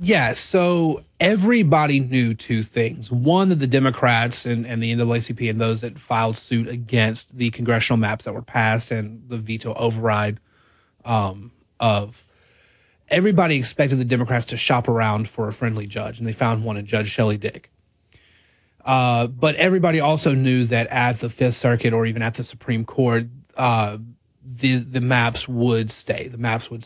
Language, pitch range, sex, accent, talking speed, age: English, 115-135 Hz, male, American, 170 wpm, 30-49